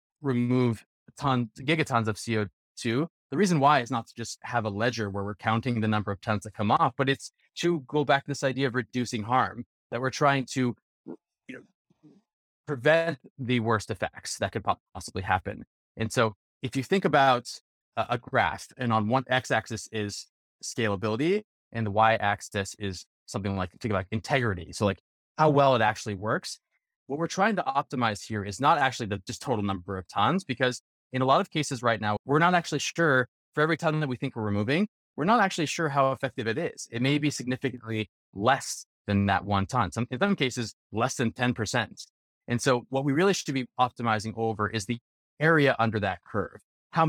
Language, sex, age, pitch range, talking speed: English, male, 30-49, 105-135 Hz, 190 wpm